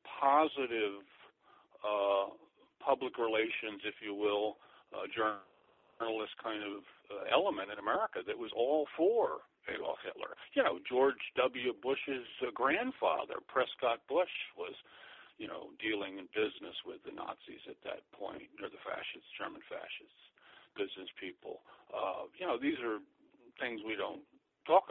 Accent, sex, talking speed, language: American, male, 140 wpm, English